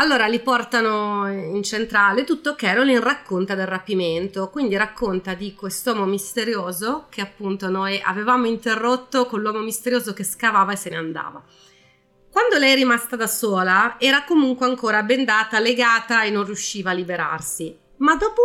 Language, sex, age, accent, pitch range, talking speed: Italian, female, 30-49, native, 185-250 Hz, 155 wpm